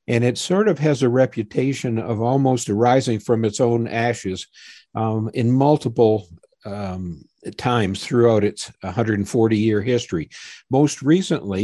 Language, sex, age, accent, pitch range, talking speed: English, male, 50-69, American, 105-125 Hz, 130 wpm